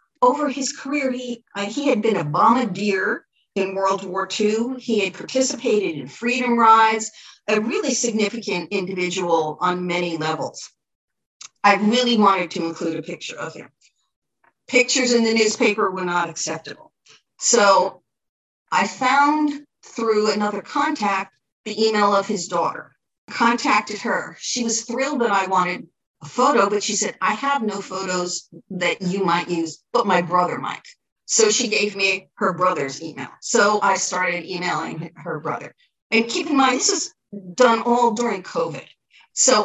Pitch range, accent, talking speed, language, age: 185-240 Hz, American, 155 wpm, English, 50-69